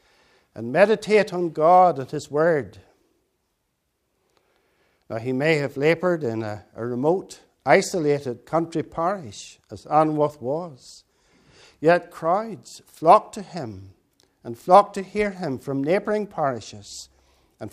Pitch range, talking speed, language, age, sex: 125-165 Hz, 120 wpm, English, 60-79, male